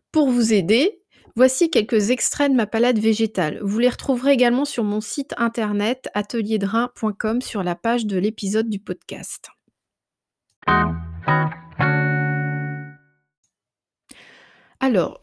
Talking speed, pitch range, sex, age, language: 105 wpm, 185-235 Hz, female, 30-49, French